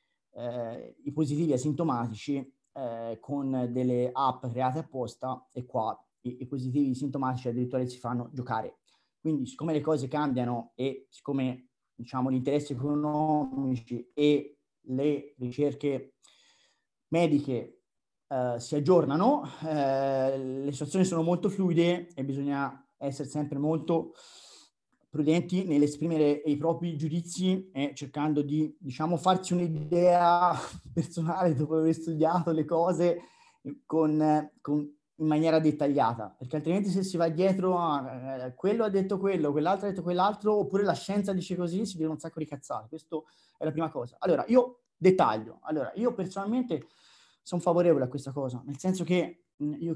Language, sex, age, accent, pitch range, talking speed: Italian, male, 30-49, native, 135-170 Hz, 145 wpm